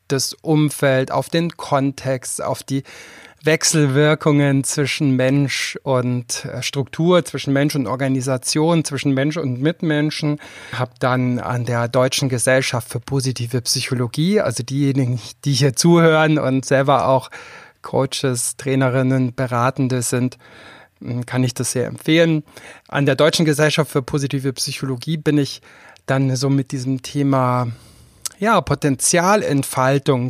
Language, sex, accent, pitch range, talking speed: German, male, German, 130-155 Hz, 125 wpm